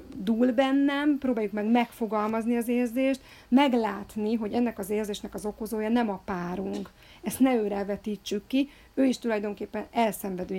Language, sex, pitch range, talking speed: Hungarian, female, 195-225 Hz, 145 wpm